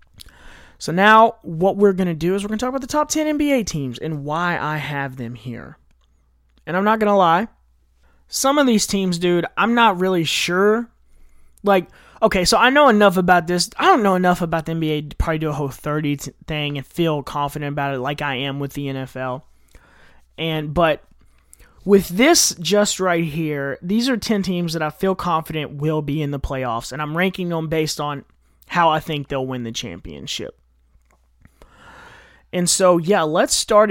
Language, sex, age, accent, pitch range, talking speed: English, male, 20-39, American, 140-190 Hz, 195 wpm